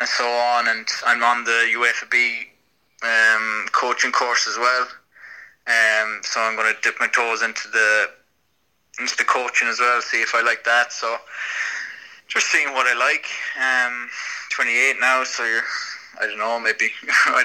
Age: 20-39